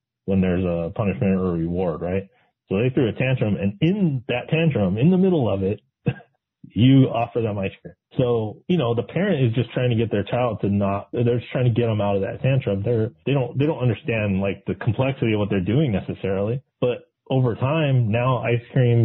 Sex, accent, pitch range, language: male, American, 100-125 Hz, English